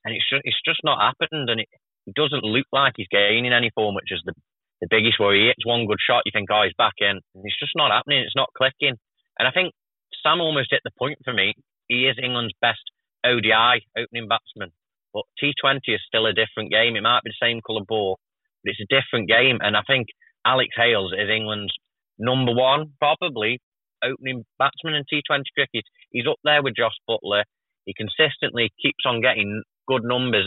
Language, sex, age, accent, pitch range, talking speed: English, male, 30-49, British, 105-130 Hz, 200 wpm